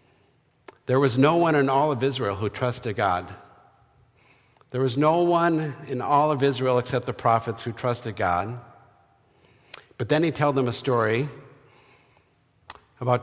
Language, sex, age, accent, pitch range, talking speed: English, male, 50-69, American, 110-140 Hz, 150 wpm